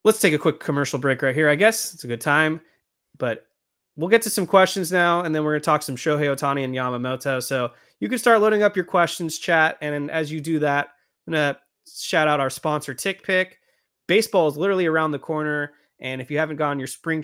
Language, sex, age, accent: English, male, 30-49, American